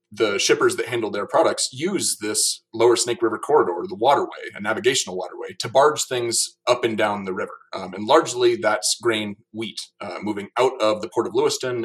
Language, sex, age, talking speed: English, male, 30-49, 195 wpm